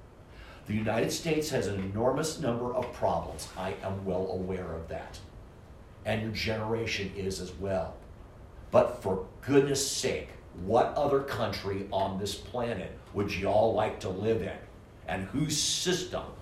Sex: male